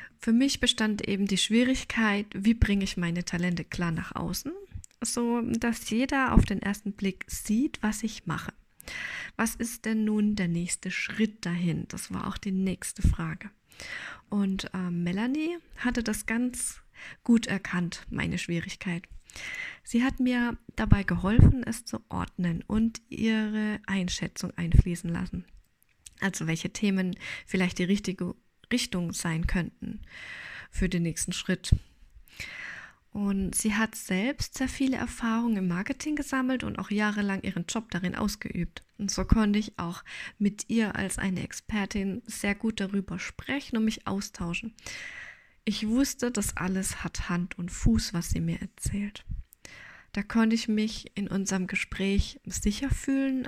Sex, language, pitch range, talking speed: female, German, 185-230 Hz, 145 wpm